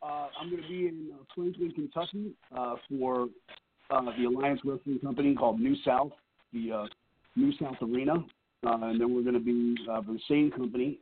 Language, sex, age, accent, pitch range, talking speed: English, male, 40-59, American, 120-140 Hz, 195 wpm